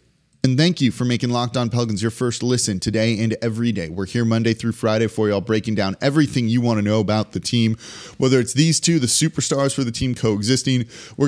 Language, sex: English, male